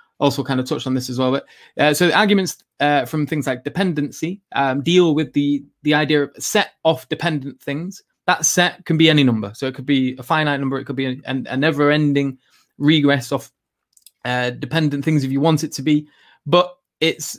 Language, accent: English, British